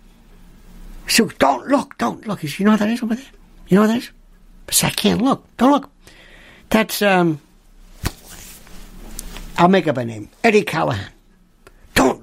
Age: 60-79